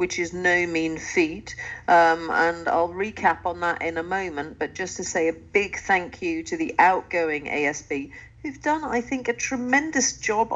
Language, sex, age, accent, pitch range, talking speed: French, female, 40-59, British, 165-215 Hz, 190 wpm